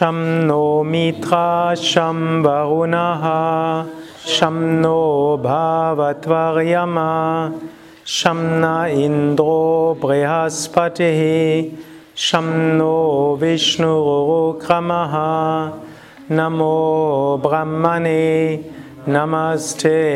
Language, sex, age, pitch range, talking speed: German, male, 30-49, 150-160 Hz, 50 wpm